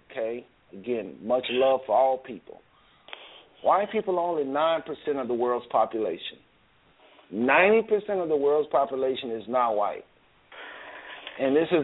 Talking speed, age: 135 wpm, 40-59